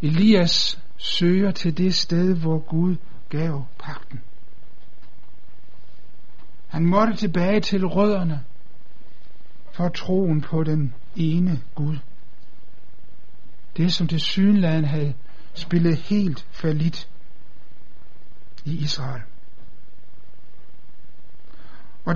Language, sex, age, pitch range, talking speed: Danish, male, 60-79, 120-180 Hz, 90 wpm